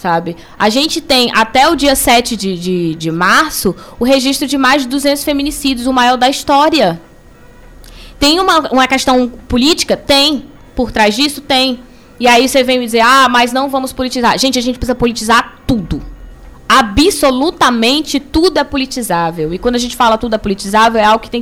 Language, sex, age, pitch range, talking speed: Portuguese, female, 10-29, 210-275 Hz, 185 wpm